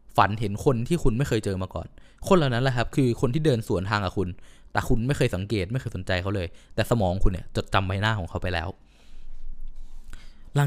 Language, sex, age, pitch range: Thai, male, 20-39, 95-135 Hz